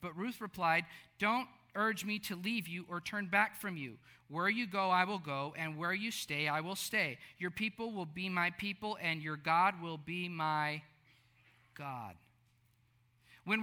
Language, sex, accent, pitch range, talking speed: English, male, American, 160-230 Hz, 180 wpm